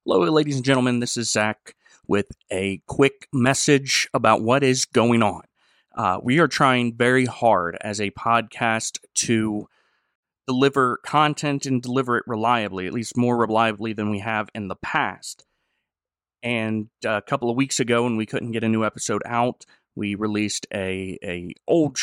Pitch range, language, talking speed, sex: 110-130 Hz, English, 165 wpm, male